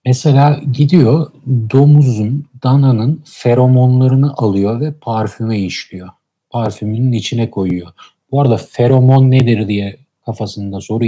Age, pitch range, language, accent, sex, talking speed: 40-59, 105-135 Hz, Turkish, native, male, 105 wpm